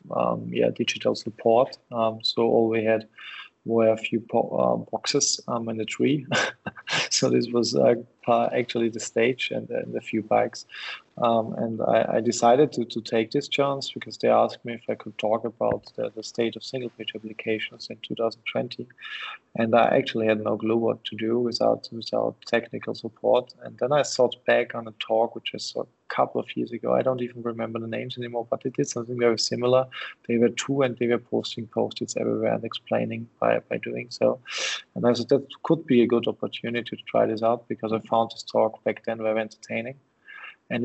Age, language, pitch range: 20-39, English, 110-120 Hz